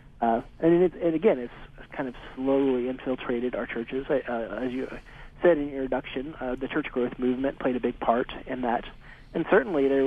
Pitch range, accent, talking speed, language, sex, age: 120-135 Hz, American, 195 wpm, English, male, 40-59